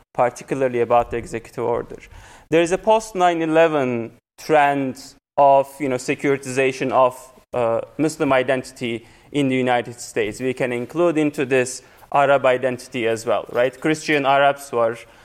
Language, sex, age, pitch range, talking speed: English, male, 30-49, 125-150 Hz, 140 wpm